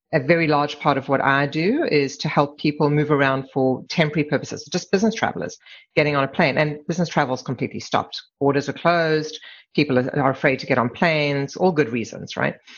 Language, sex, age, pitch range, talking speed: English, female, 40-59, 135-155 Hz, 205 wpm